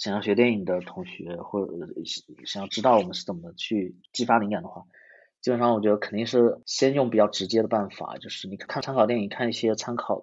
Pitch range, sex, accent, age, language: 105-125 Hz, male, native, 30-49, Chinese